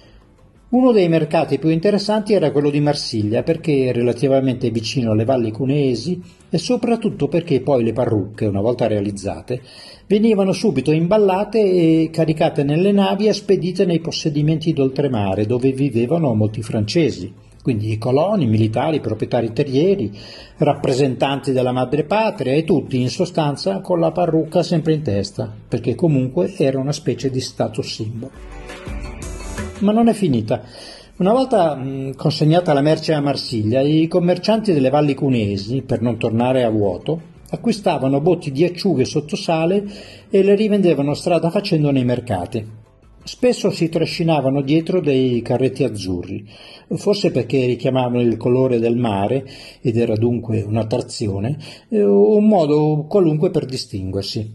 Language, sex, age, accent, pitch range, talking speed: Italian, male, 40-59, native, 120-170 Hz, 135 wpm